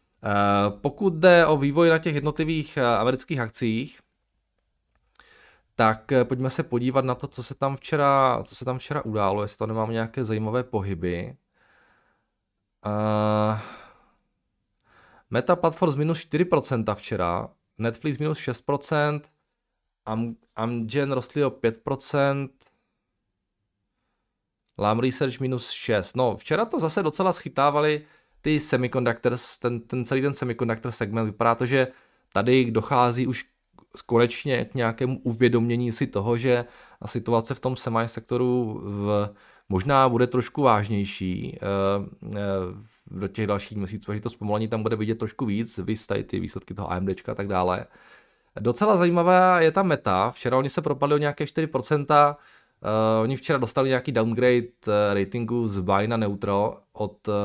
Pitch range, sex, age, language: 105-140 Hz, male, 20-39, Czech